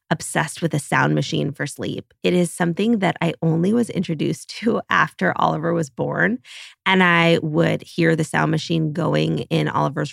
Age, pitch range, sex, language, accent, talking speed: 20-39, 150-185 Hz, female, English, American, 180 wpm